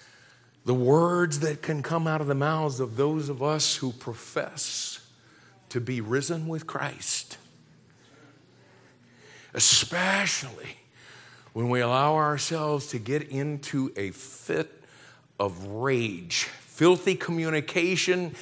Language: English